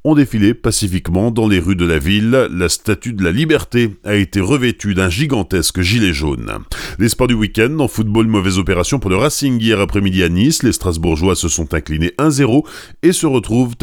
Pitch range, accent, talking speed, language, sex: 95-130 Hz, French, 195 wpm, French, male